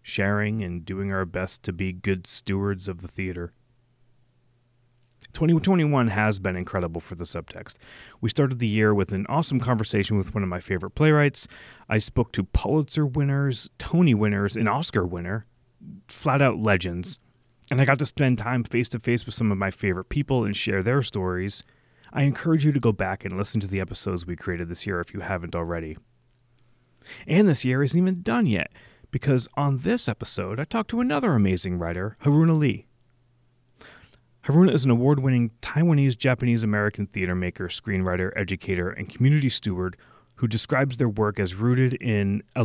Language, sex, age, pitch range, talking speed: English, male, 30-49, 95-125 Hz, 170 wpm